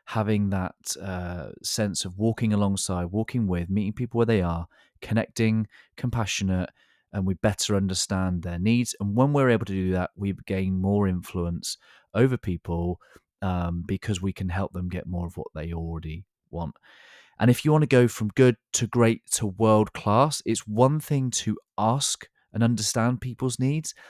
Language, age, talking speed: English, 30-49, 170 wpm